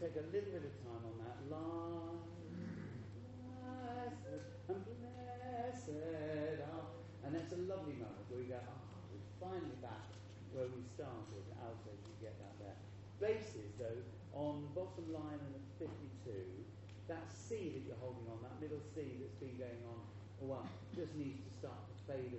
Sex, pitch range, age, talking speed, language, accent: male, 100-125 Hz, 40-59, 170 wpm, English, British